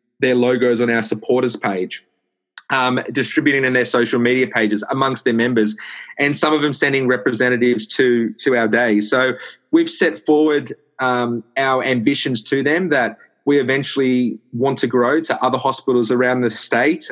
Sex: male